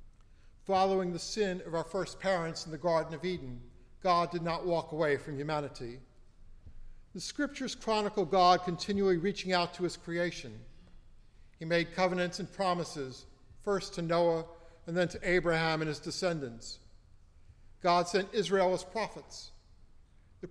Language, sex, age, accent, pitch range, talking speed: English, male, 50-69, American, 140-185 Hz, 145 wpm